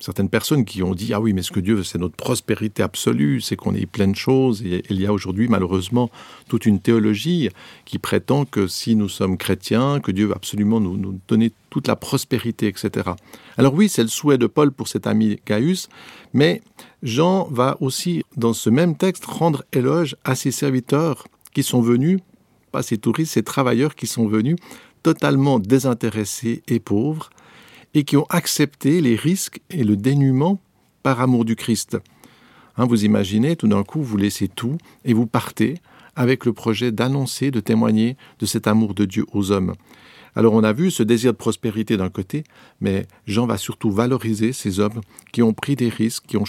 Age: 50-69